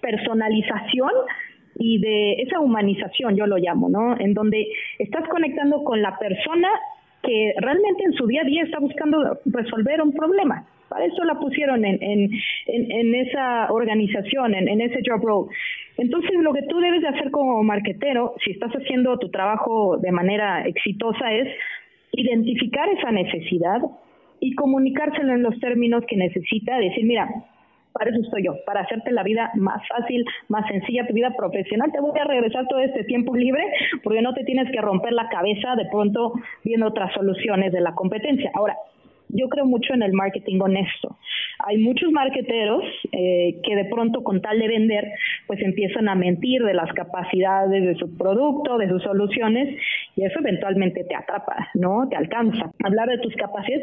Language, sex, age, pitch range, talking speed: Spanish, female, 30-49, 205-265 Hz, 175 wpm